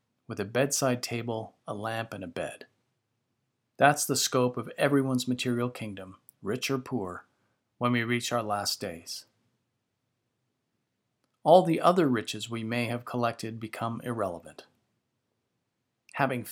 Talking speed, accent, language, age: 130 wpm, American, English, 40-59